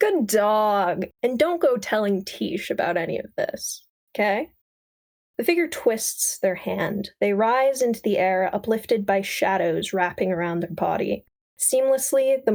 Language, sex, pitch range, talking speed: English, female, 185-230 Hz, 150 wpm